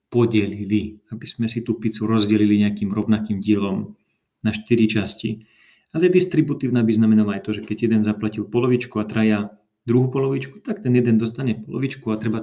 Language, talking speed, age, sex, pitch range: Slovak, 170 wpm, 40-59, male, 105-125 Hz